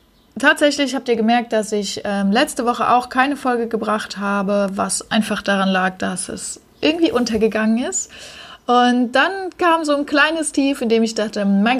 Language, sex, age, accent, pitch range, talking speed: German, female, 20-39, German, 205-250 Hz, 180 wpm